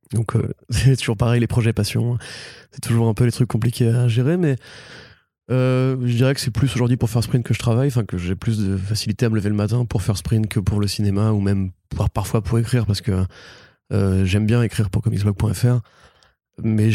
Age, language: 20-39, French